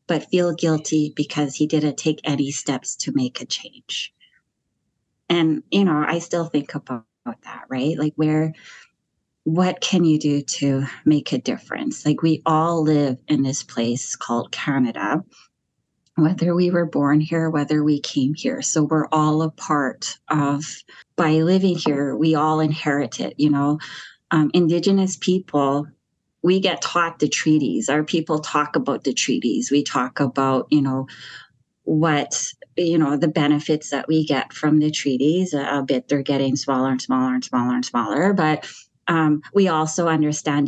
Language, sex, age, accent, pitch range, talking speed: English, female, 30-49, American, 145-165 Hz, 165 wpm